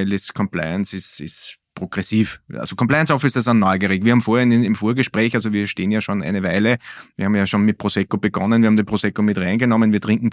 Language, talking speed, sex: German, 215 wpm, male